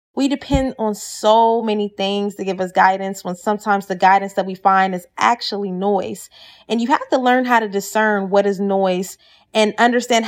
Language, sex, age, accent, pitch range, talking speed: English, female, 20-39, American, 195-235 Hz, 195 wpm